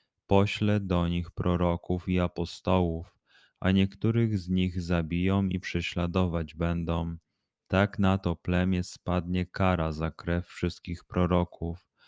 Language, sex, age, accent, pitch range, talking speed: Polish, male, 30-49, native, 85-95 Hz, 120 wpm